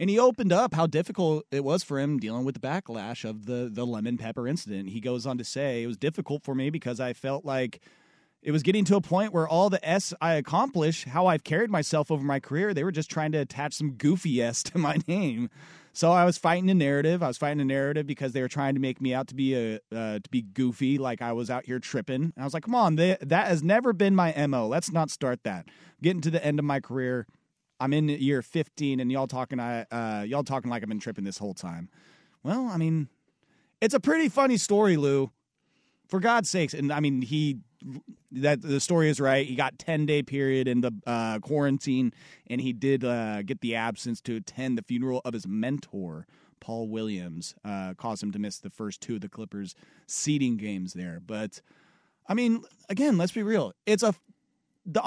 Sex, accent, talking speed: male, American, 225 wpm